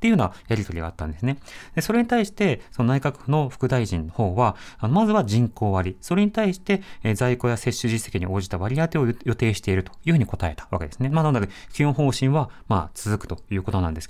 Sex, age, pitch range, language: male, 30-49, 100-155 Hz, Japanese